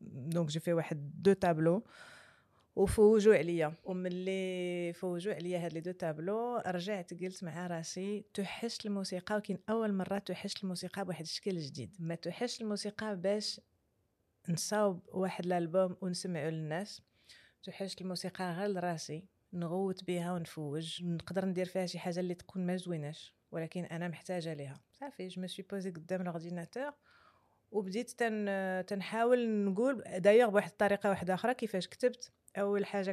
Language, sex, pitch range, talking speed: Arabic, female, 170-200 Hz, 140 wpm